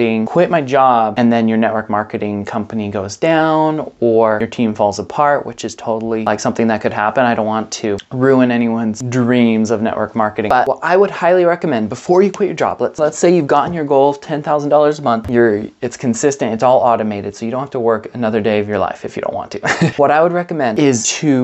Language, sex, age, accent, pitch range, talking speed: English, male, 20-39, American, 120-150 Hz, 235 wpm